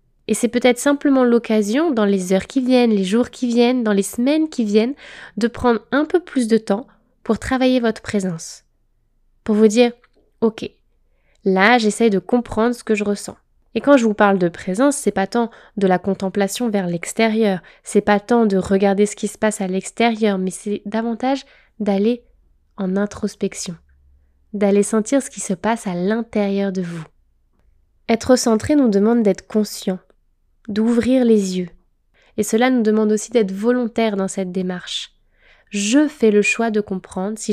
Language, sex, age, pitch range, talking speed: French, female, 20-39, 200-240 Hz, 175 wpm